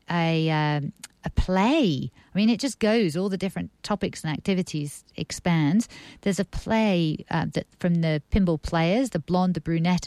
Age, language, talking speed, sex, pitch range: 50-69, English, 175 wpm, female, 150-185 Hz